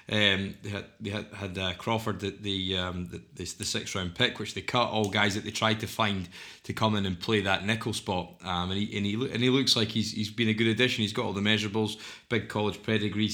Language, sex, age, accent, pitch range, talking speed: English, male, 20-39, British, 105-120 Hz, 255 wpm